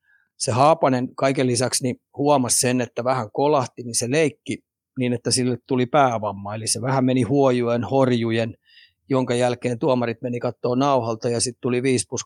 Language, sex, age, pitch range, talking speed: Finnish, male, 30-49, 120-135 Hz, 170 wpm